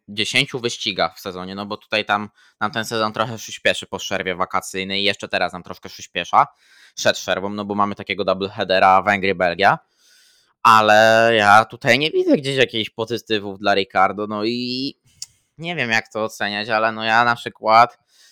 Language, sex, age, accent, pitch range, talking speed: Polish, male, 20-39, native, 100-115 Hz, 185 wpm